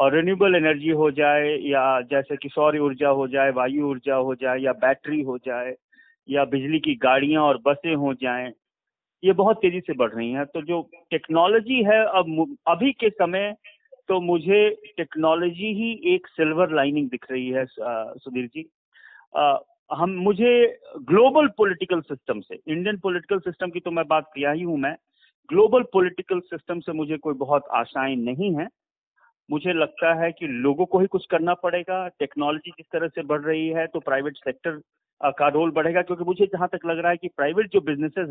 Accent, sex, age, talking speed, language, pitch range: native, male, 40-59, 180 wpm, Hindi, 150-200 Hz